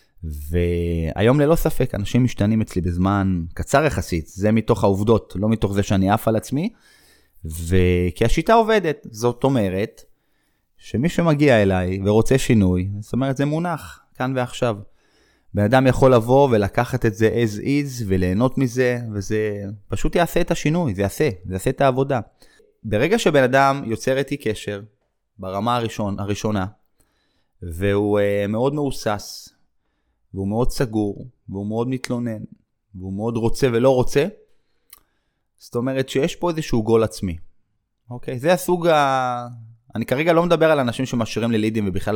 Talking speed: 140 wpm